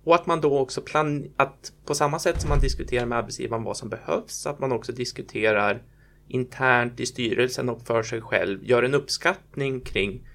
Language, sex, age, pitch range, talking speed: Swedish, male, 20-39, 120-150 Hz, 190 wpm